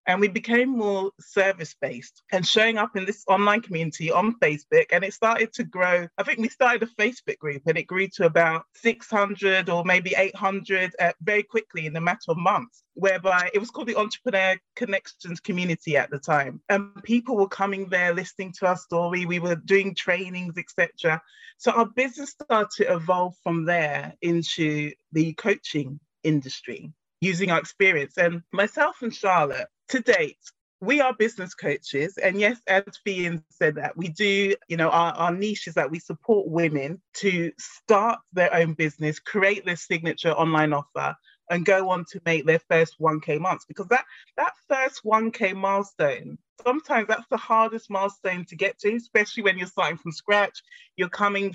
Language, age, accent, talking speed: English, 30-49, British, 175 wpm